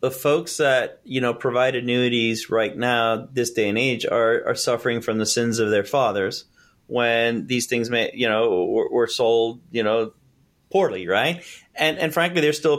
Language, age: English, 30-49